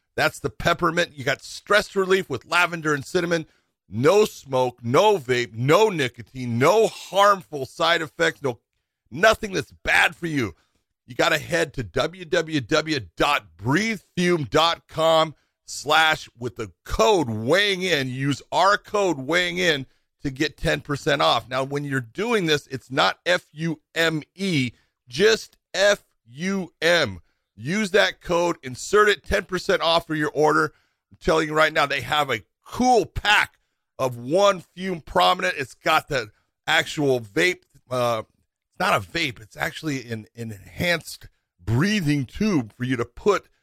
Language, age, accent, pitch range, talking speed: English, 40-59, American, 125-175 Hz, 145 wpm